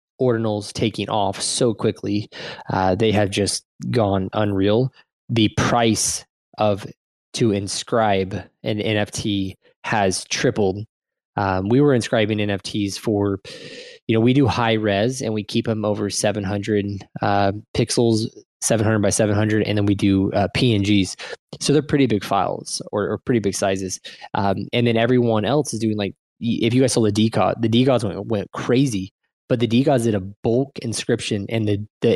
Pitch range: 100-120 Hz